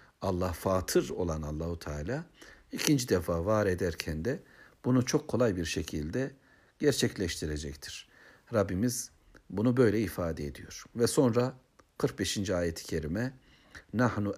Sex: male